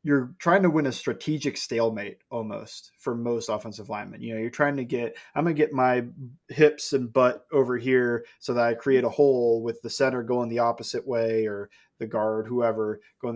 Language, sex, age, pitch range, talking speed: English, male, 20-39, 115-140 Hz, 205 wpm